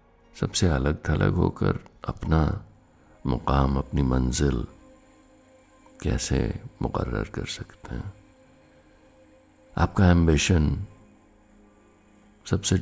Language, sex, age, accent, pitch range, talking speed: Hindi, male, 60-79, native, 75-105 Hz, 75 wpm